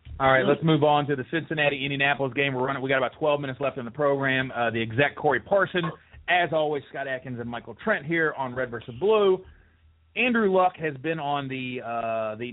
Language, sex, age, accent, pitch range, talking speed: English, male, 30-49, American, 130-175 Hz, 220 wpm